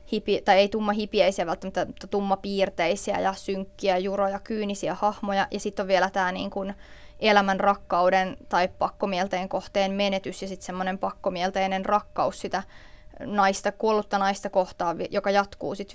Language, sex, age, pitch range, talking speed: Finnish, female, 20-39, 195-210 Hz, 135 wpm